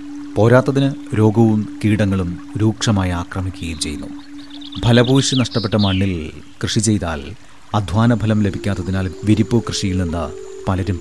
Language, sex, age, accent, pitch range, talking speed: Malayalam, male, 30-49, native, 95-130 Hz, 100 wpm